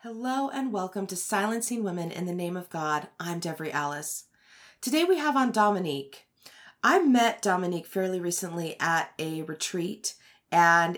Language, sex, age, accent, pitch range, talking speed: English, female, 30-49, American, 175-235 Hz, 155 wpm